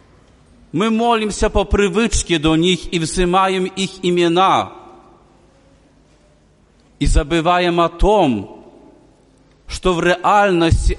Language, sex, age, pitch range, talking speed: Polish, male, 40-59, 155-195 Hz, 95 wpm